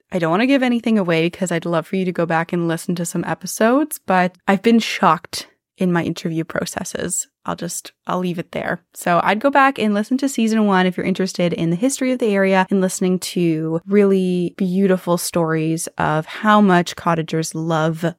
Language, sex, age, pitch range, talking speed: English, female, 20-39, 175-220 Hz, 210 wpm